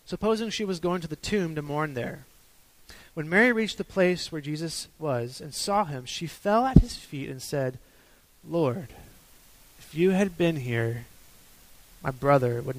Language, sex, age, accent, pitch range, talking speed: English, male, 20-39, American, 130-175 Hz, 175 wpm